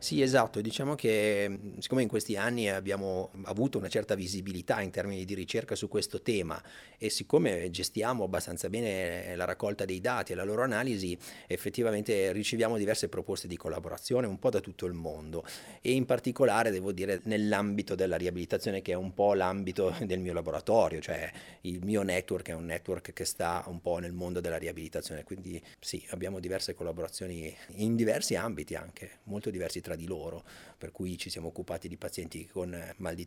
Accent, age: native, 30-49